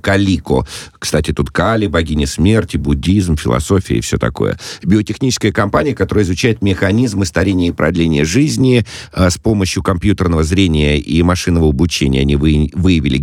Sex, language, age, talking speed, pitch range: male, Russian, 50-69, 130 wpm, 75-100 Hz